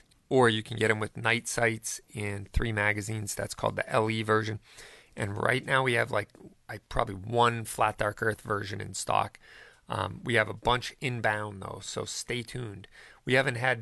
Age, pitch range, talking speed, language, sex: 40-59, 105-120 Hz, 190 wpm, English, male